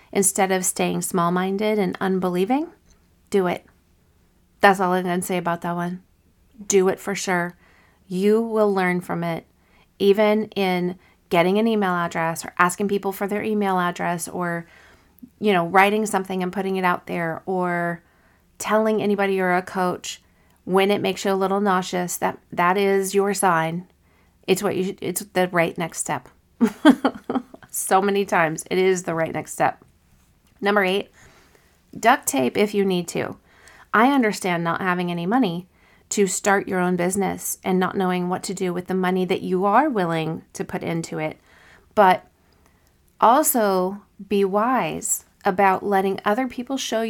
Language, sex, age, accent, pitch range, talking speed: English, female, 40-59, American, 175-205 Hz, 165 wpm